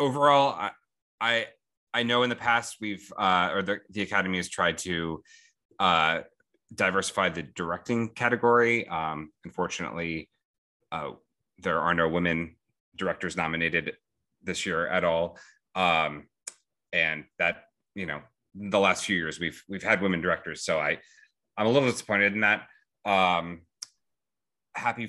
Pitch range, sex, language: 85-115 Hz, male, English